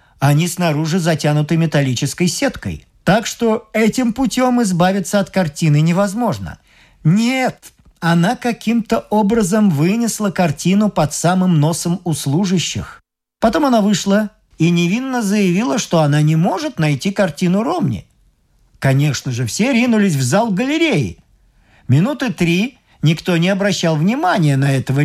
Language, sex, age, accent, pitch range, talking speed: Russian, male, 50-69, native, 145-215 Hz, 125 wpm